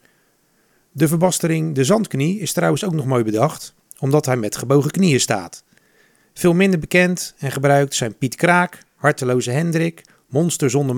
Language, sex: Dutch, male